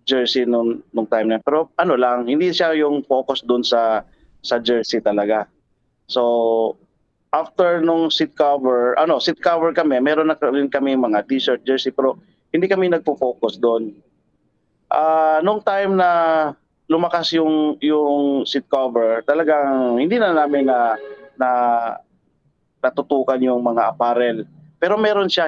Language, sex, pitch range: English, male, 120-150 Hz